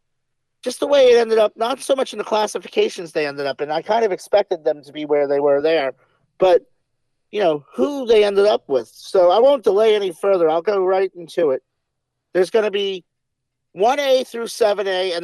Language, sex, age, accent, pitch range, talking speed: English, male, 50-69, American, 160-225 Hz, 215 wpm